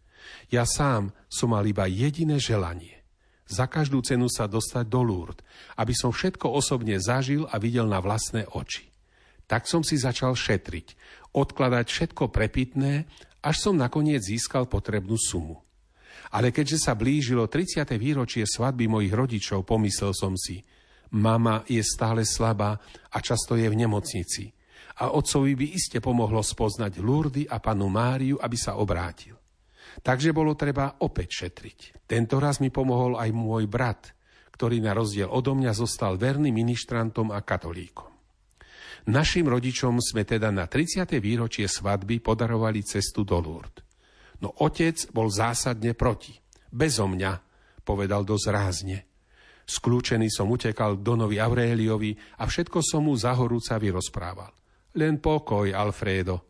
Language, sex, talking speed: Slovak, male, 135 wpm